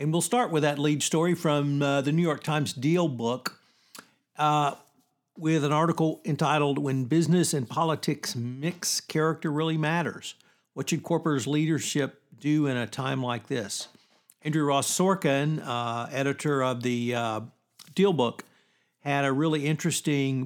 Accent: American